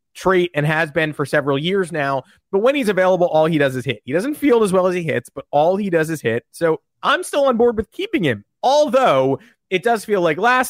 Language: English